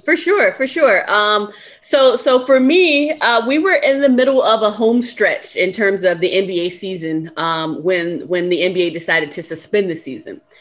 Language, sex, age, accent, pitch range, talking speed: English, female, 30-49, American, 175-220 Hz, 200 wpm